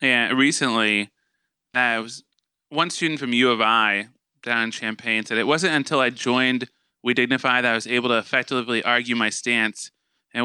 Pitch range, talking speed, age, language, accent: 115-150 Hz, 180 wpm, 20-39, English, American